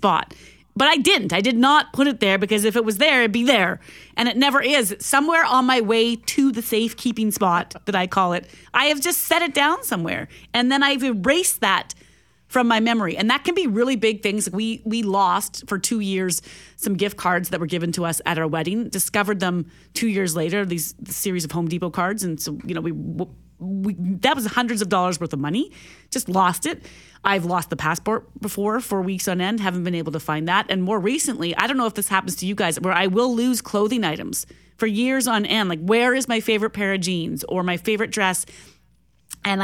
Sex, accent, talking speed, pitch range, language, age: female, American, 230 wpm, 185-250 Hz, English, 30-49